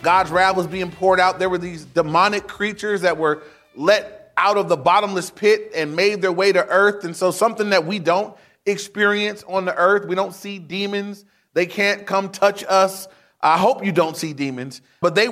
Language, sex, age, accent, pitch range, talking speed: English, male, 30-49, American, 170-200 Hz, 205 wpm